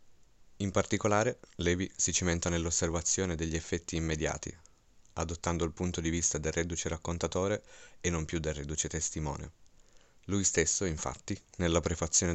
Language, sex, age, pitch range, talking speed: Italian, male, 30-49, 80-95 Hz, 135 wpm